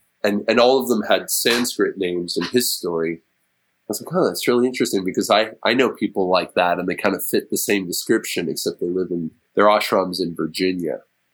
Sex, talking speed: male, 215 wpm